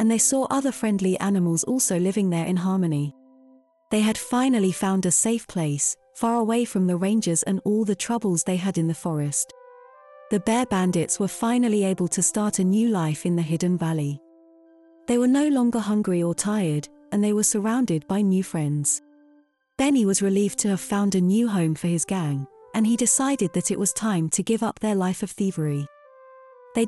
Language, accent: English, British